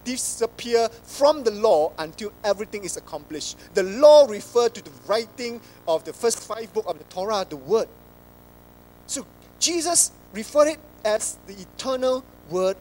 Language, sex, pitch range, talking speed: English, male, 160-245 Hz, 150 wpm